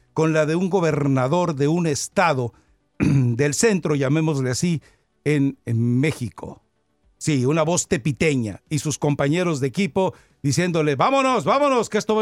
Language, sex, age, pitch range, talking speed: English, male, 60-79, 135-175 Hz, 145 wpm